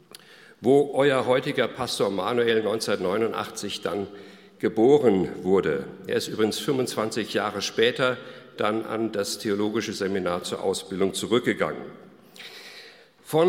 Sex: male